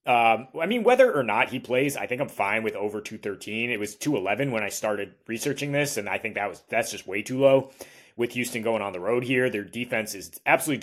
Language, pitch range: English, 110-135 Hz